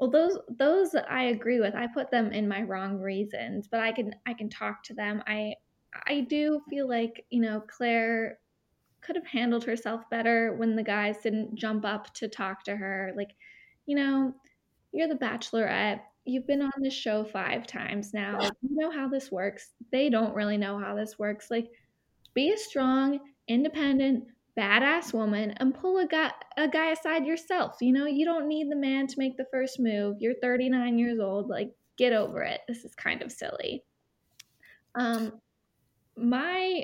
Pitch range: 215-280 Hz